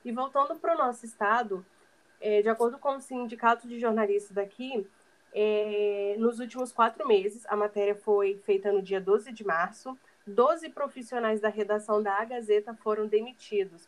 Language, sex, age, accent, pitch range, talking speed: Portuguese, female, 20-39, Brazilian, 210-255 Hz, 150 wpm